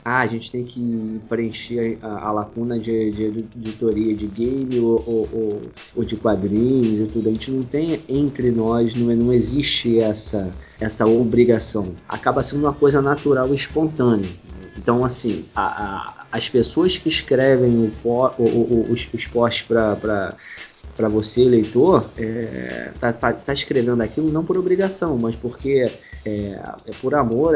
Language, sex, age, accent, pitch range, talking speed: Portuguese, male, 20-39, Brazilian, 110-130 Hz, 150 wpm